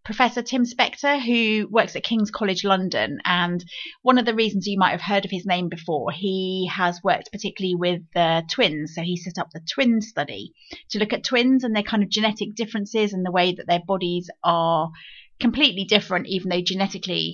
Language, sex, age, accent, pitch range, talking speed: English, female, 30-49, British, 180-225 Hz, 200 wpm